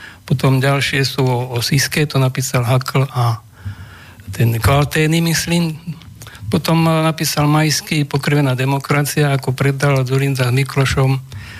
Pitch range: 125-155 Hz